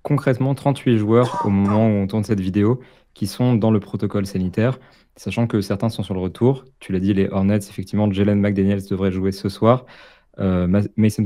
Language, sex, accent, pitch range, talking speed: French, male, French, 100-115 Hz, 195 wpm